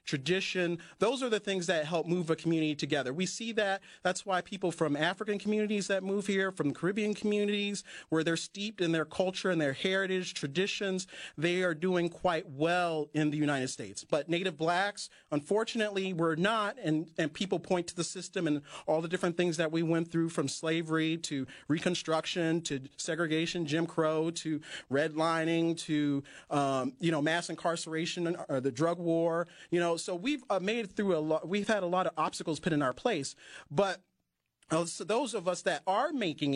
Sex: male